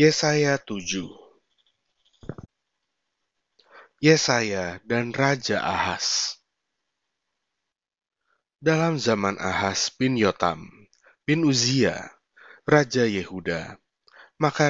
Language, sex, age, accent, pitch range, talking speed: Indonesian, male, 30-49, native, 100-140 Hz, 65 wpm